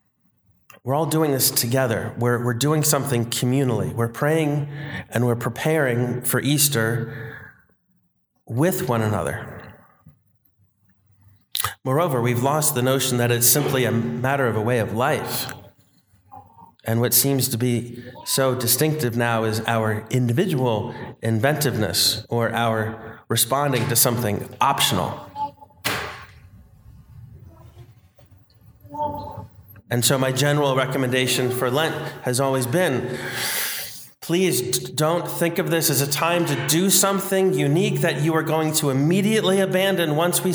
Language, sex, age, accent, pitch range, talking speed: English, male, 30-49, American, 120-160 Hz, 125 wpm